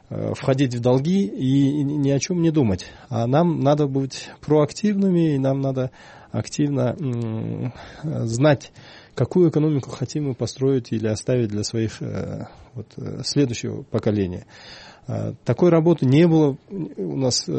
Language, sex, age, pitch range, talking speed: Russian, male, 20-39, 120-150 Hz, 125 wpm